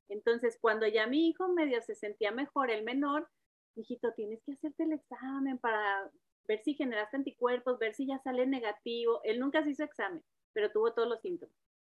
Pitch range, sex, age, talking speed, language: 235-295 Hz, female, 30-49, 190 wpm, Spanish